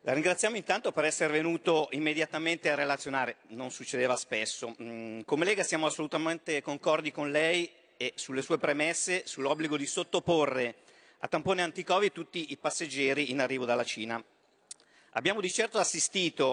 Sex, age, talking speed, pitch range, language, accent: male, 50-69, 145 wpm, 135-165 Hz, Italian, native